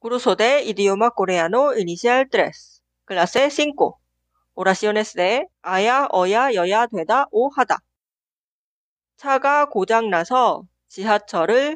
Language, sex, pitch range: Korean, female, 190-275 Hz